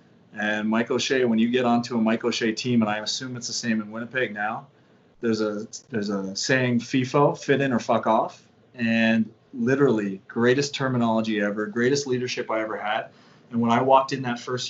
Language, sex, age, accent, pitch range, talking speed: English, male, 30-49, American, 110-130 Hz, 195 wpm